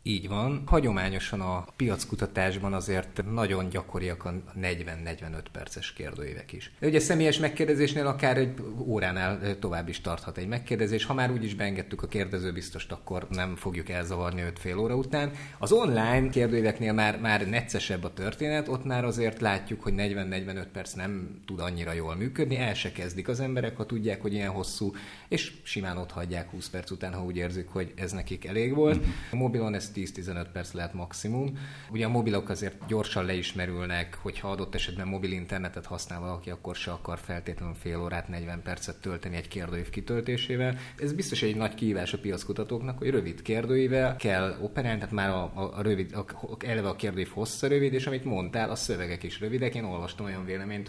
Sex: male